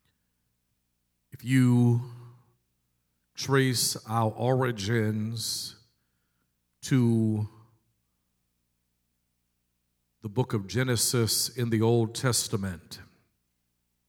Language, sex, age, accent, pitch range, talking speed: English, male, 50-69, American, 85-130 Hz, 55 wpm